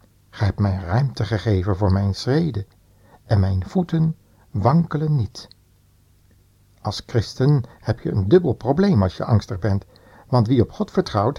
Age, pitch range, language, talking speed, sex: 60-79, 100-125 Hz, Dutch, 155 wpm, male